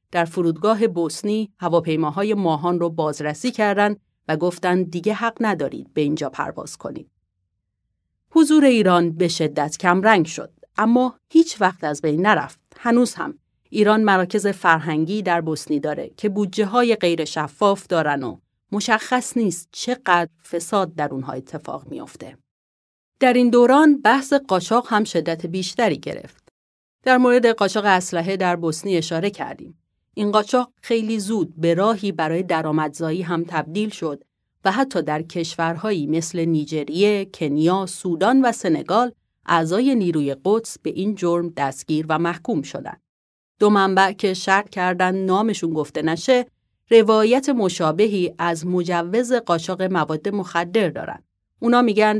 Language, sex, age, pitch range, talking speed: Persian, female, 40-59, 160-215 Hz, 135 wpm